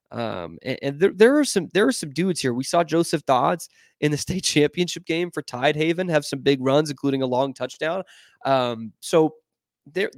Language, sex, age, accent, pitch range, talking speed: English, male, 20-39, American, 120-155 Hz, 205 wpm